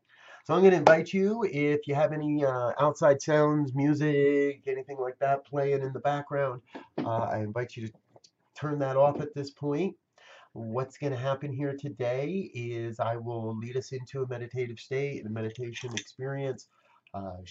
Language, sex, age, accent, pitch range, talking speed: English, male, 30-49, American, 105-140 Hz, 175 wpm